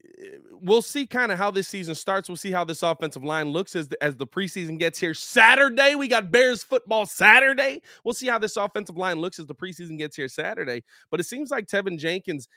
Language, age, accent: English, 20-39, American